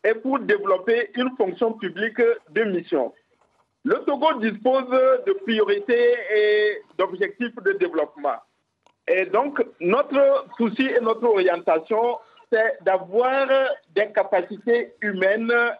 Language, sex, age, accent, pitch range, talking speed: French, male, 50-69, French, 200-270 Hz, 110 wpm